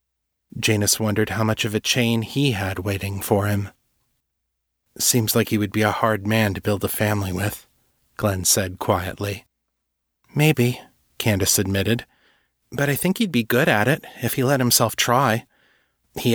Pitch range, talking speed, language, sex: 100-125 Hz, 165 wpm, English, male